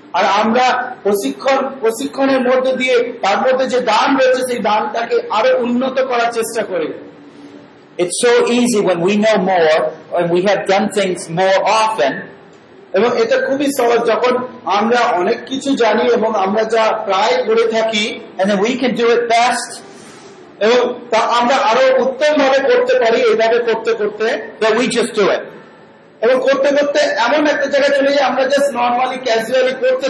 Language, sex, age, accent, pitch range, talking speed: Bengali, male, 50-69, native, 225-280 Hz, 100 wpm